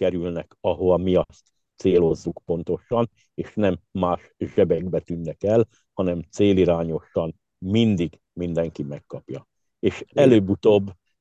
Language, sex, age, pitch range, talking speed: Hungarian, male, 60-79, 90-110 Hz, 100 wpm